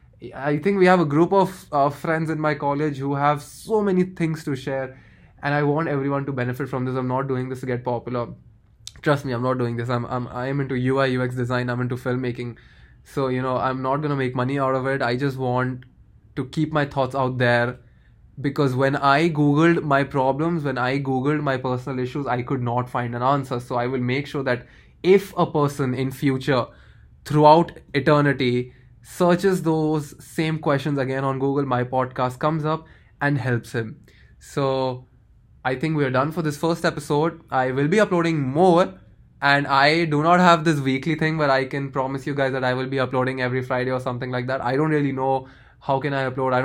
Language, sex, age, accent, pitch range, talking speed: English, male, 20-39, Indian, 125-145 Hz, 210 wpm